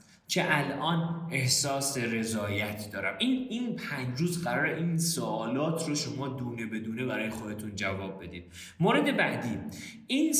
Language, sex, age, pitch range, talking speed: Persian, male, 30-49, 135-205 Hz, 140 wpm